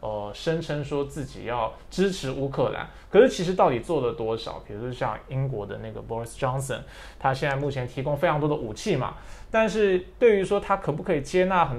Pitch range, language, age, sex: 125-175 Hz, Chinese, 20-39, male